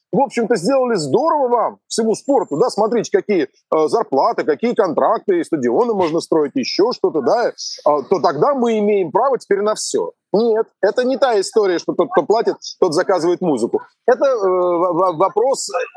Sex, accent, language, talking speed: male, native, Russian, 165 wpm